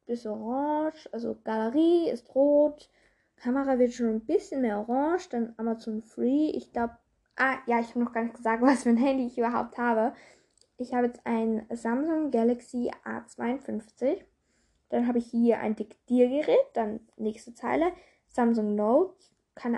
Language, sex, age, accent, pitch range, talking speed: German, female, 10-29, German, 235-280 Hz, 160 wpm